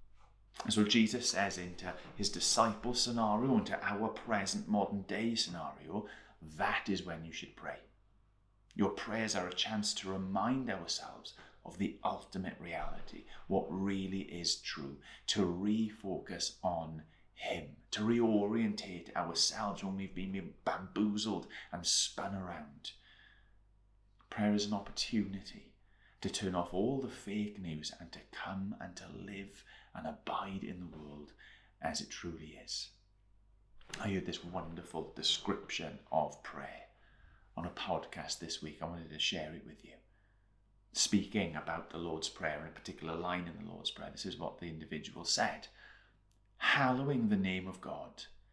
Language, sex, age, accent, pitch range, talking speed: English, male, 30-49, British, 90-105 Hz, 145 wpm